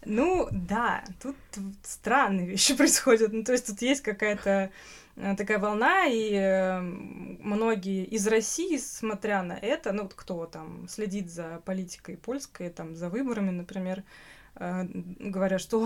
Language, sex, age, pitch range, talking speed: Russian, female, 20-39, 190-235 Hz, 130 wpm